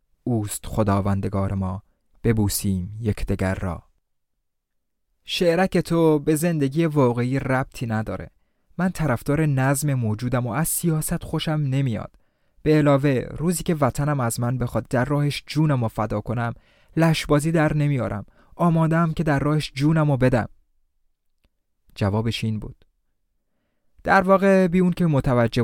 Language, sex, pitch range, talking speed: Persian, male, 110-155 Hz, 125 wpm